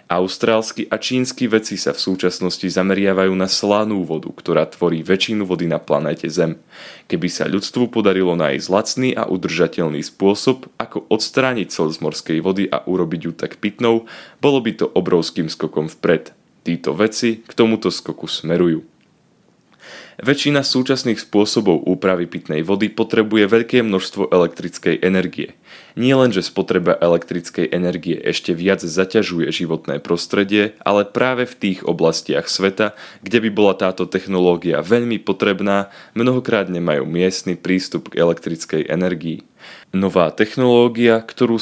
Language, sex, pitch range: Slovak, male, 90-110 Hz